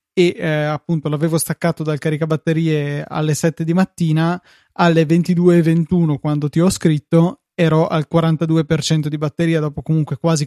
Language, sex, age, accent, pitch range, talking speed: Italian, male, 20-39, native, 150-170 Hz, 145 wpm